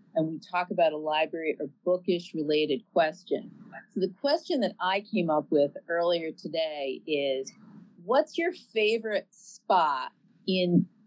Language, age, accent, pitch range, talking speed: English, 40-59, American, 165-210 Hz, 140 wpm